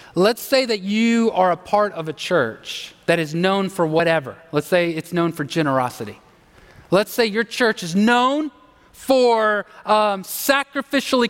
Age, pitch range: 30-49, 175-260 Hz